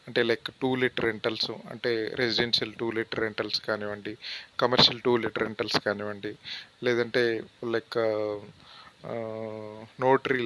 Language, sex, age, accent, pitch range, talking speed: Telugu, male, 30-49, native, 110-135 Hz, 110 wpm